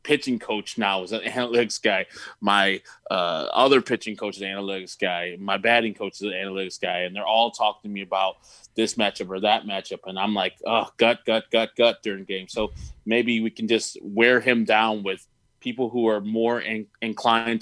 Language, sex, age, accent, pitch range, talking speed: English, male, 20-39, American, 105-125 Hz, 200 wpm